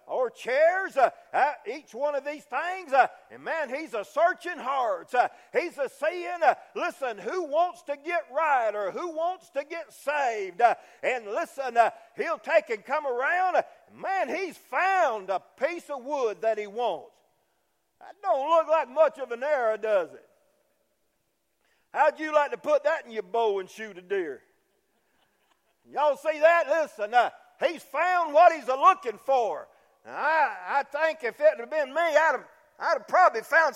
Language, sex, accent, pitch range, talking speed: English, male, American, 275-350 Hz, 180 wpm